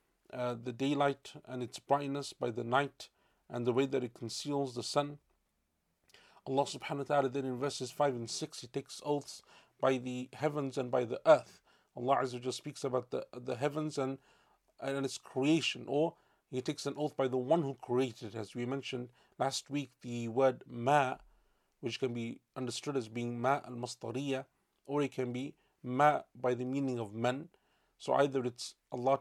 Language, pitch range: English, 125-145 Hz